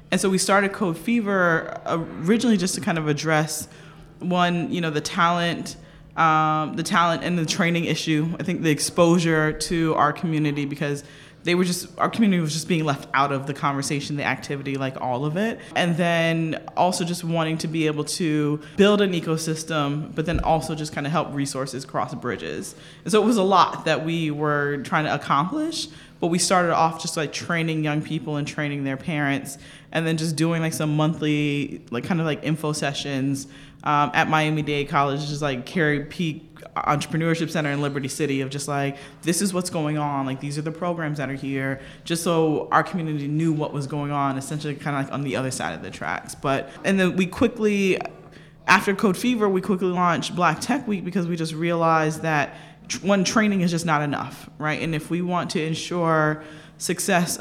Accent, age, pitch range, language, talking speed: American, 20-39, 150-175 Hz, English, 205 wpm